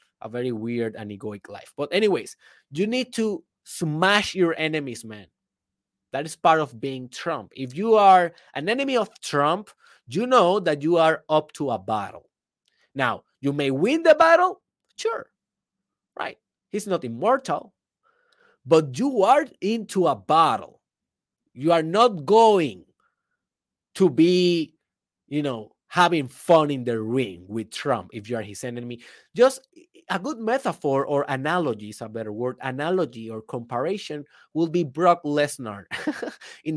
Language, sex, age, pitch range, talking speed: Spanish, male, 30-49, 130-200 Hz, 150 wpm